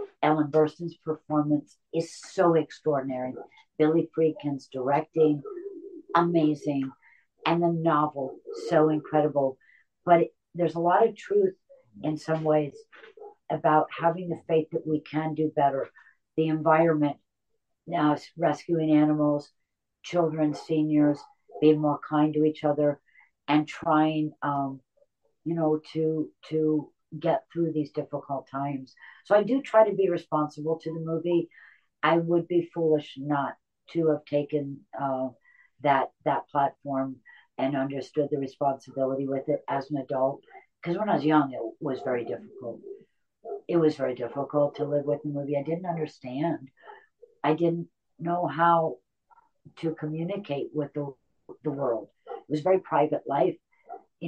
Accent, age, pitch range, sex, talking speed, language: American, 60-79, 145-170 Hz, female, 140 wpm, English